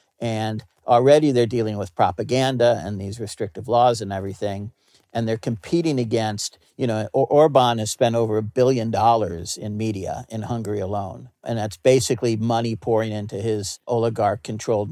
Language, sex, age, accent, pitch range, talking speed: English, male, 50-69, American, 105-125 Hz, 155 wpm